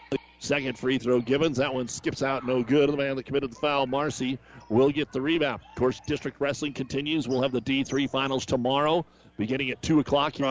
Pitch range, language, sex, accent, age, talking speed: 120-150 Hz, English, male, American, 40-59, 210 wpm